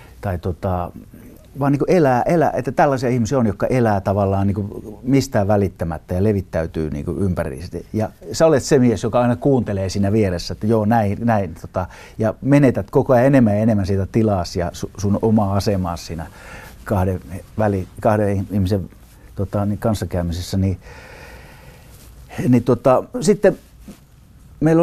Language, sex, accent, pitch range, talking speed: Finnish, male, native, 95-120 Hz, 145 wpm